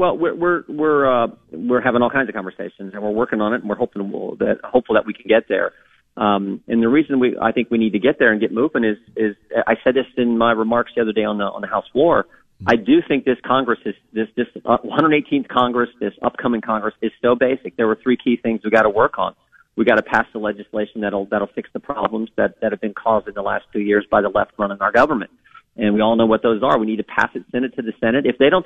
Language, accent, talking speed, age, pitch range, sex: English, American, 280 wpm, 40-59, 105-130 Hz, male